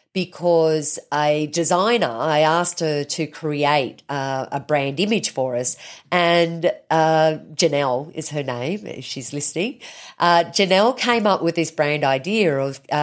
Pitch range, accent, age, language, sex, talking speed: 145-215 Hz, Australian, 40-59, English, female, 145 wpm